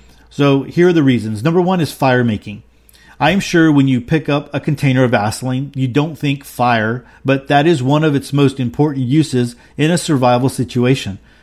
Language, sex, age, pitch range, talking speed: English, male, 40-59, 125-150 Hz, 200 wpm